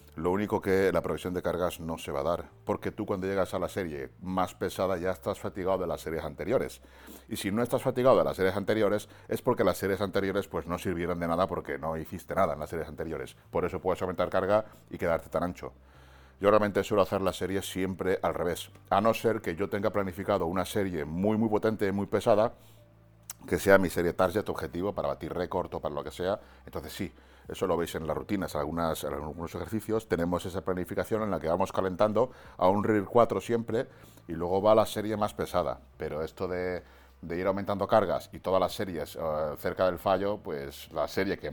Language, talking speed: Spanish, 220 wpm